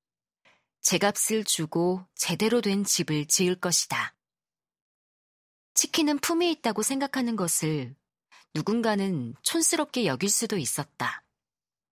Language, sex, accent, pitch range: Korean, female, native, 165-230 Hz